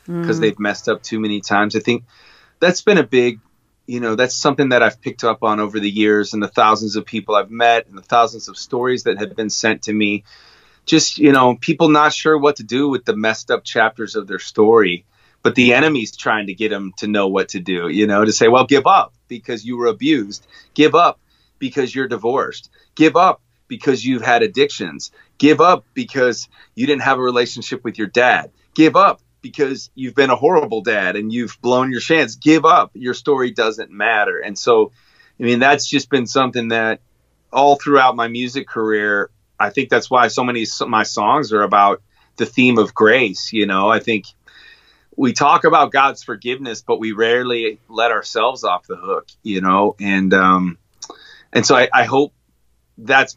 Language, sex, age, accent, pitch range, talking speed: English, male, 30-49, American, 105-135 Hz, 200 wpm